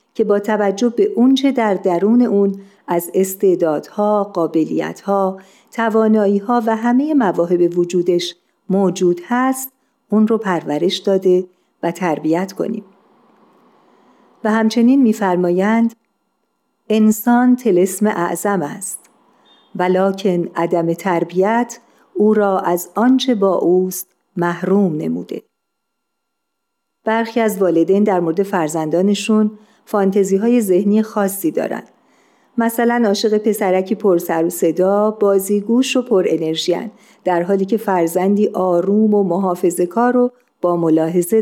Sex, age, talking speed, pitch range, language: female, 50-69, 105 wpm, 180-220 Hz, Persian